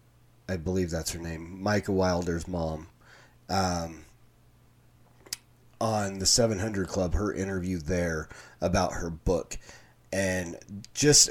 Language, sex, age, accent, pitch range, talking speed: English, male, 30-49, American, 90-115 Hz, 110 wpm